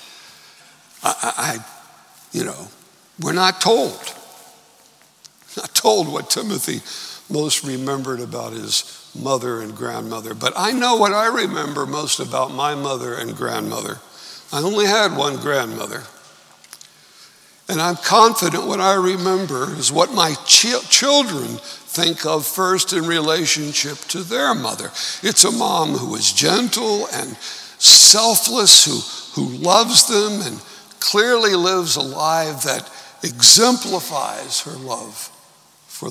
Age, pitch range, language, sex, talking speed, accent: 60-79, 135-190 Hz, English, male, 125 wpm, American